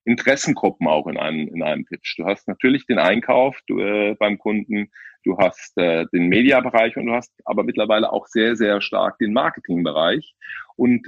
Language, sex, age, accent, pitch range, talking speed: German, male, 40-59, German, 105-130 Hz, 170 wpm